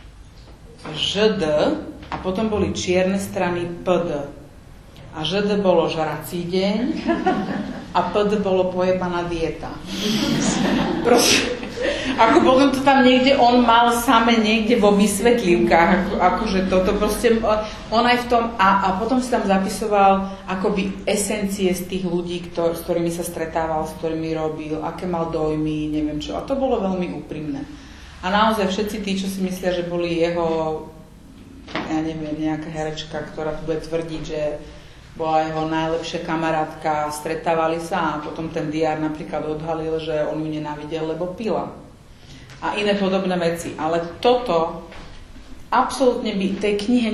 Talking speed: 145 wpm